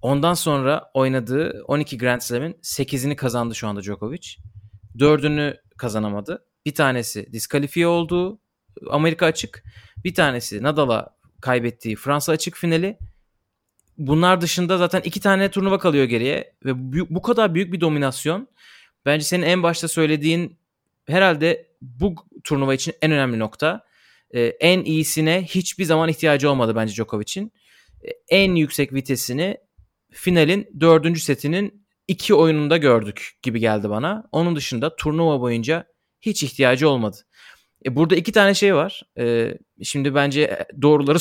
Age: 30-49